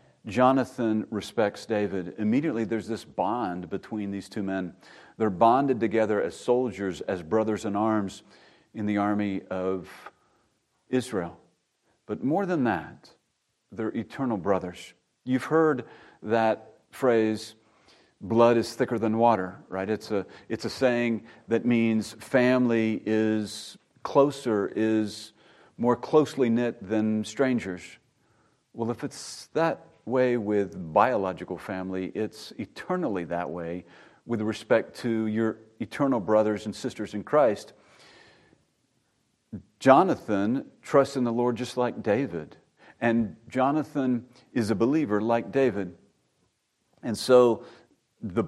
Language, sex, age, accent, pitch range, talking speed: English, male, 50-69, American, 105-120 Hz, 120 wpm